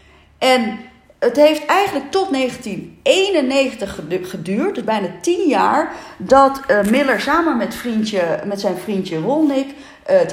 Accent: Dutch